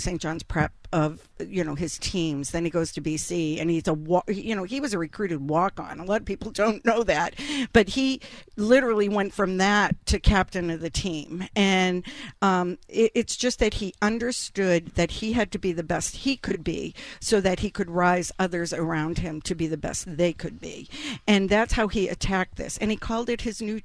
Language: English